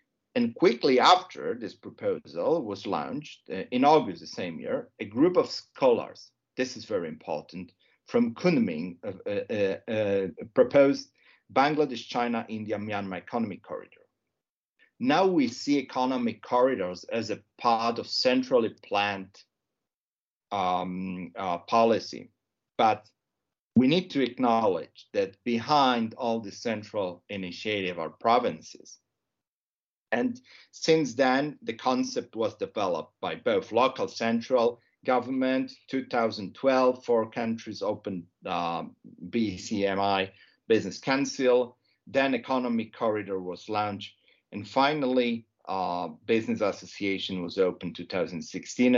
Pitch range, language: 100-150 Hz, English